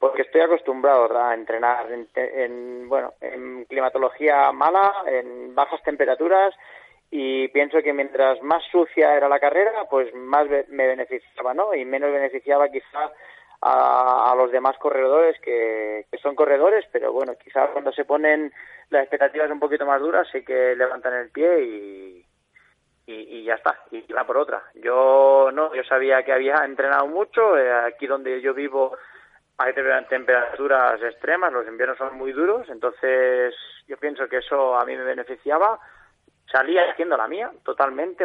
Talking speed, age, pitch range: 160 wpm, 20-39, 130-160 Hz